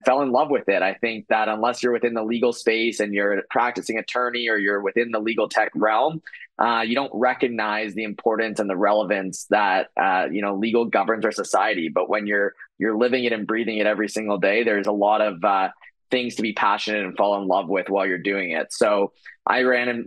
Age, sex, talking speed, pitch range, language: 20-39, male, 230 wpm, 100-115 Hz, English